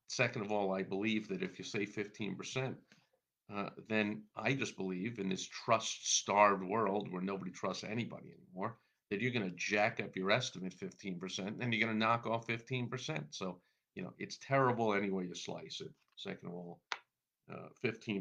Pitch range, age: 95-115 Hz, 50-69